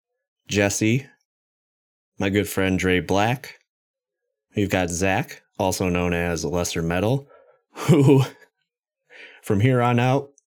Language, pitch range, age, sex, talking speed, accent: English, 95-135 Hz, 20-39, male, 110 wpm, American